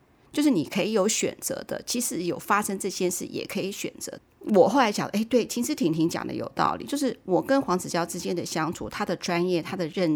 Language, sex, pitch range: Chinese, female, 175-250 Hz